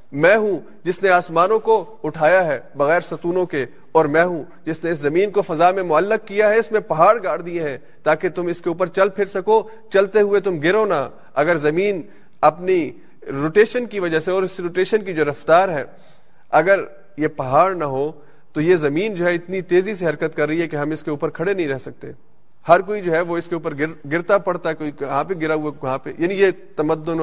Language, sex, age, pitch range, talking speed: Urdu, male, 30-49, 150-185 Hz, 230 wpm